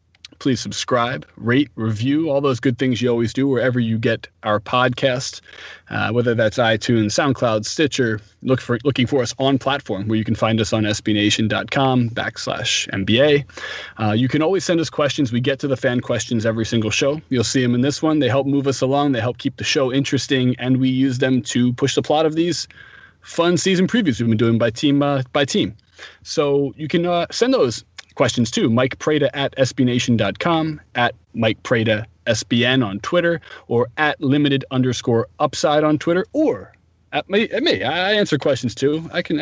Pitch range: 115-145 Hz